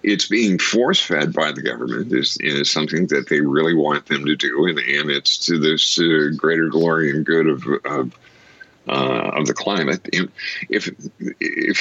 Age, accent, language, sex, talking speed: 50-69, American, English, male, 185 wpm